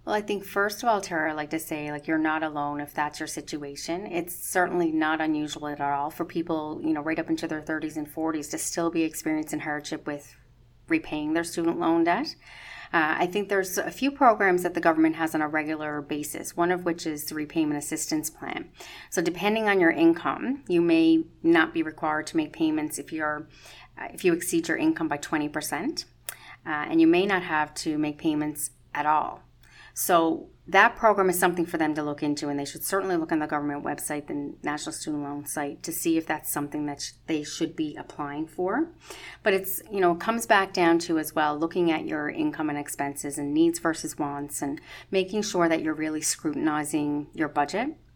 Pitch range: 150-175 Hz